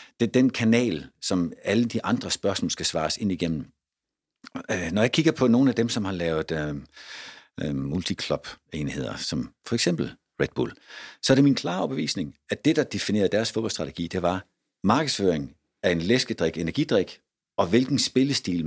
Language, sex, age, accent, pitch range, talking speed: Danish, male, 60-79, native, 85-125 Hz, 170 wpm